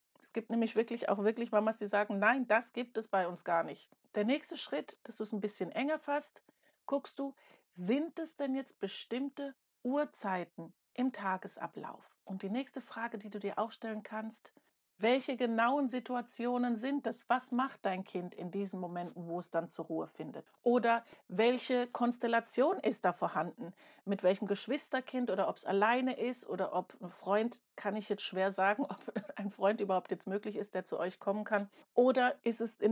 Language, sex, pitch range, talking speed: German, female, 200-255 Hz, 190 wpm